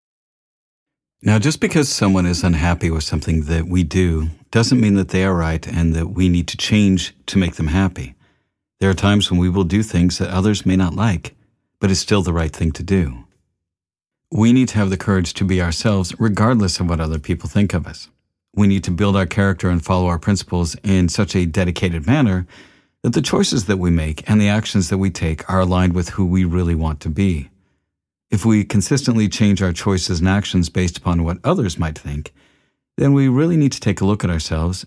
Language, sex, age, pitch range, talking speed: English, male, 50-69, 85-105 Hz, 215 wpm